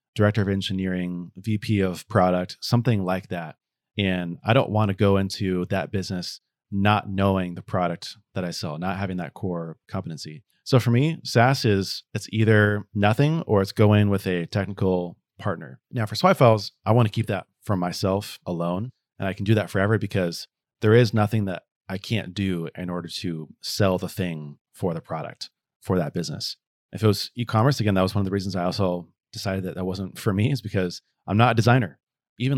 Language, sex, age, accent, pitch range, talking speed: English, male, 30-49, American, 95-115 Hz, 200 wpm